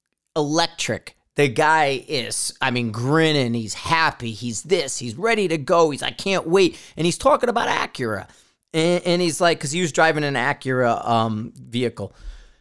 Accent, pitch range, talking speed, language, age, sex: American, 130-175 Hz, 170 wpm, English, 30-49, male